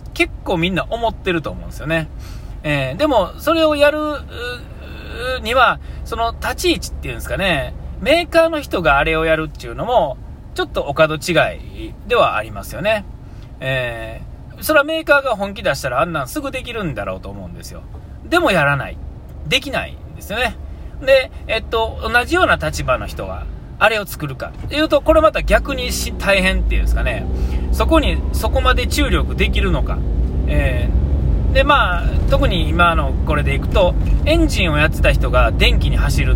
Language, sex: Japanese, male